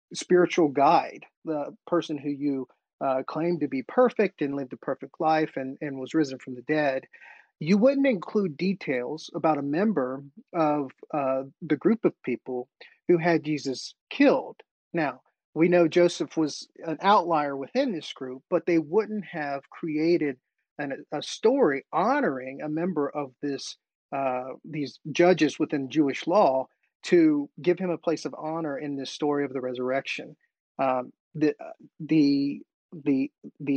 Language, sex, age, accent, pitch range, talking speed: English, male, 40-59, American, 135-170 Hz, 150 wpm